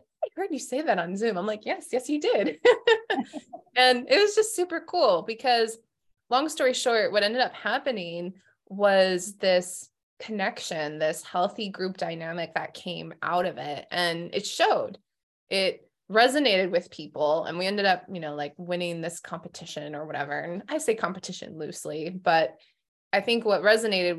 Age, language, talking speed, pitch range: 20-39, English, 165 wpm, 170-225 Hz